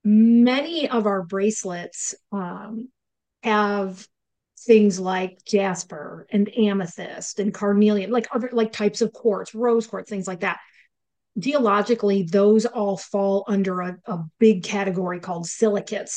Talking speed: 130 wpm